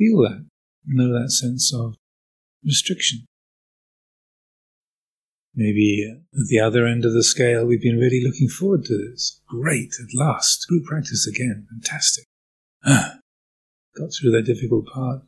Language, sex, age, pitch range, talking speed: English, male, 50-69, 110-130 Hz, 135 wpm